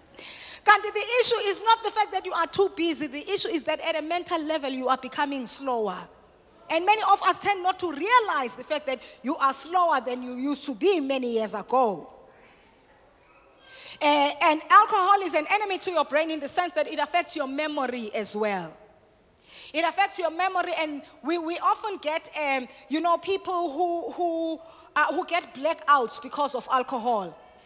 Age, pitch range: 30-49, 295-395 Hz